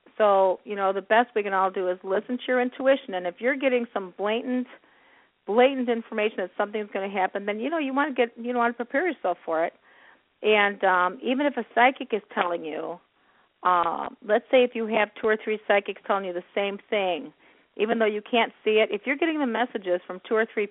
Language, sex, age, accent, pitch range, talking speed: English, female, 50-69, American, 180-230 Hz, 235 wpm